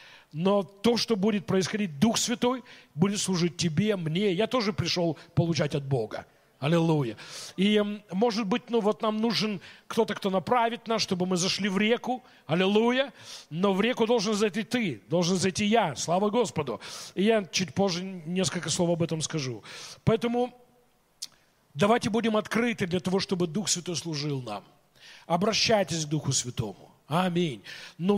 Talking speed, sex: 155 wpm, male